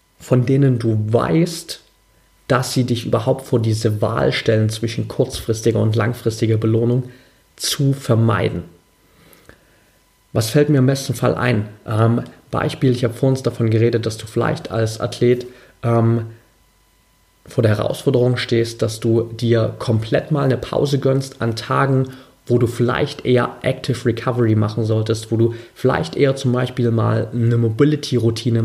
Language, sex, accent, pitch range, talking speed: German, male, German, 115-130 Hz, 145 wpm